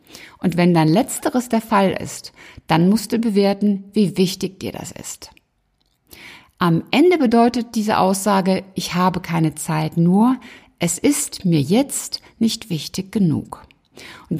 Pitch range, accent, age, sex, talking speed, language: 170-225 Hz, German, 60-79, female, 140 wpm, German